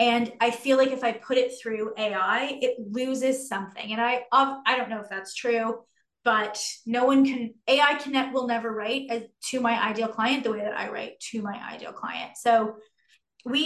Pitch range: 215-245 Hz